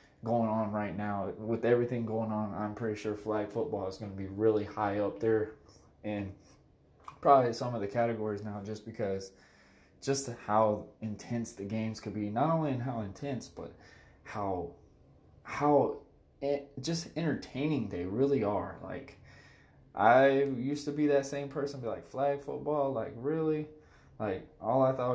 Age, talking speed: 20-39, 160 wpm